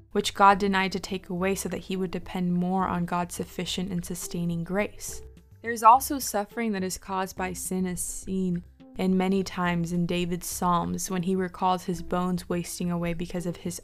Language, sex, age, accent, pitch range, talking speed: English, female, 20-39, American, 175-200 Hz, 195 wpm